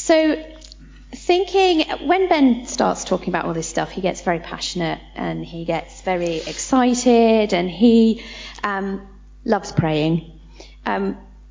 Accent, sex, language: British, female, English